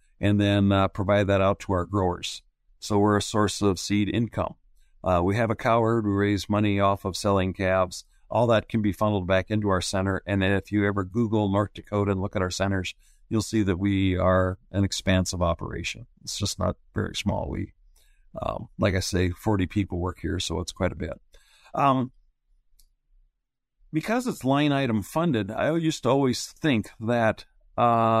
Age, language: 50-69, English